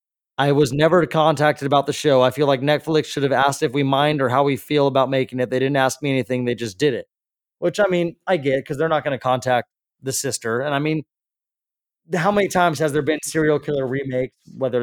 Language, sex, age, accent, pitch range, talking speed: English, male, 20-39, American, 125-150 Hz, 240 wpm